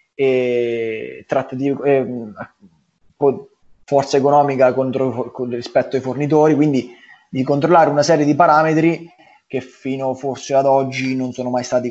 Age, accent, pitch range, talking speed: 20-39, native, 120-140 Hz, 125 wpm